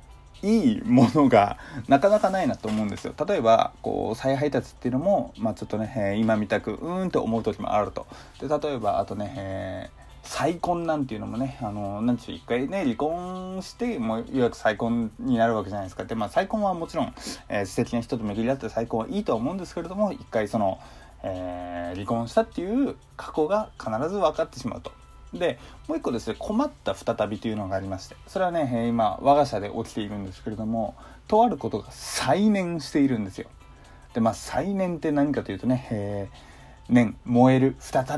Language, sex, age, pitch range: Japanese, male, 20-39, 105-160 Hz